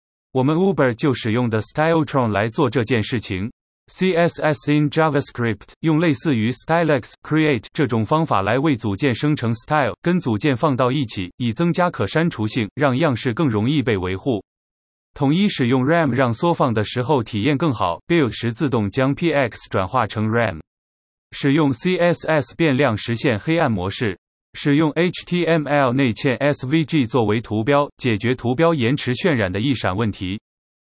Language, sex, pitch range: Chinese, male, 110-155 Hz